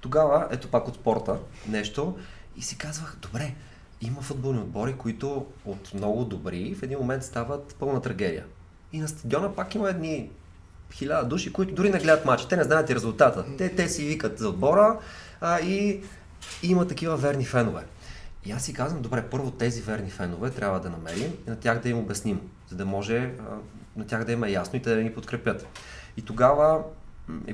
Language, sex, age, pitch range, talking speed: Bulgarian, male, 20-39, 100-140 Hz, 190 wpm